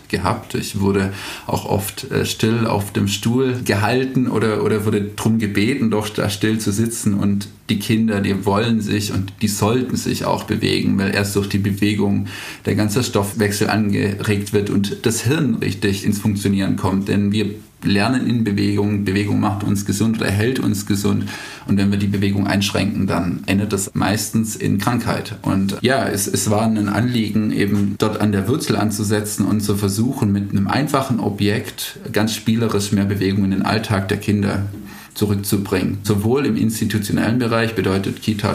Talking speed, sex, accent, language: 170 wpm, male, German, German